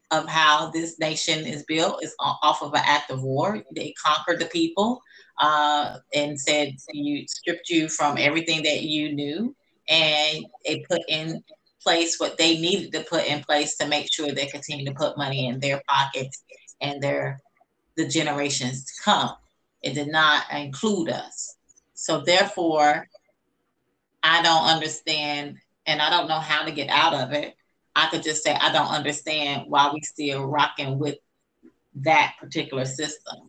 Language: English